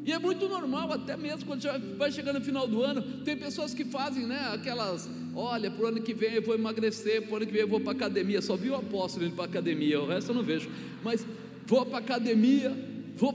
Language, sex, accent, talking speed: Portuguese, male, Brazilian, 250 wpm